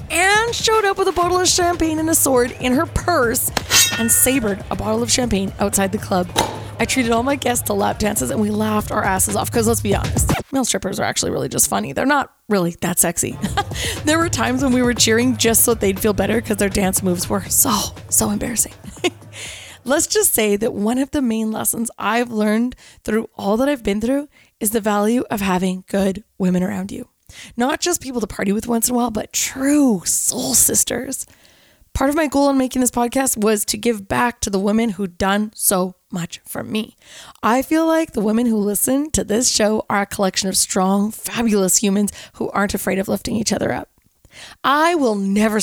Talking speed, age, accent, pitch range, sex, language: 215 wpm, 20-39, American, 205-265 Hz, female, English